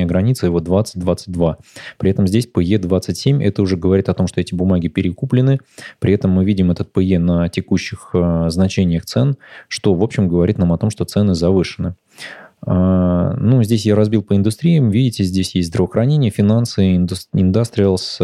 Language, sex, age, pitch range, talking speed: Russian, male, 20-39, 90-110 Hz, 160 wpm